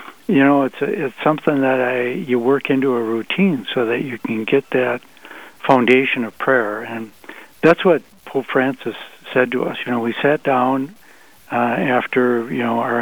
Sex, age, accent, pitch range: male, 60-79, American, 120-140 Hz